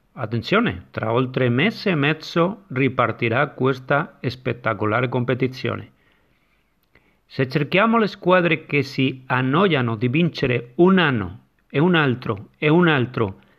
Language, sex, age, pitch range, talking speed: Italian, male, 50-69, 130-170 Hz, 120 wpm